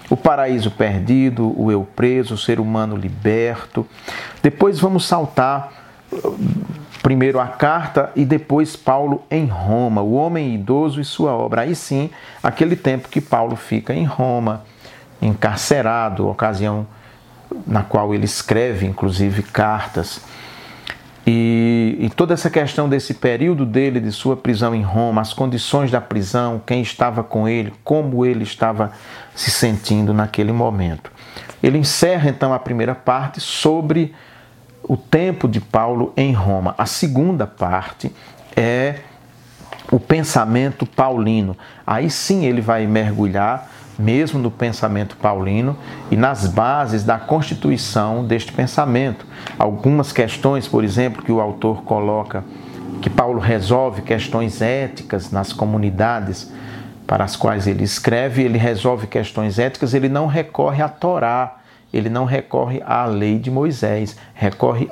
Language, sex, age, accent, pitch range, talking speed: Portuguese, male, 40-59, Brazilian, 110-135 Hz, 135 wpm